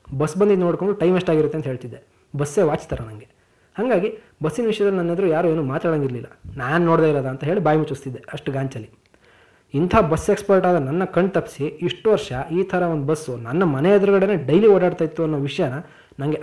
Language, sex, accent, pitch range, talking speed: Kannada, male, native, 145-185 Hz, 170 wpm